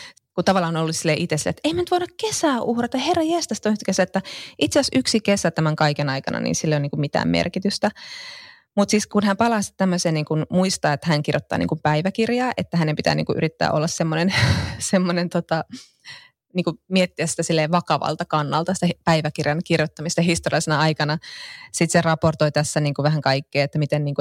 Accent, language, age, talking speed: native, Finnish, 20-39, 195 wpm